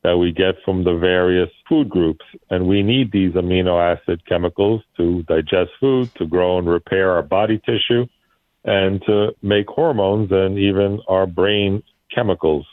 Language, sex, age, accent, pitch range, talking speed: English, male, 50-69, American, 90-110 Hz, 160 wpm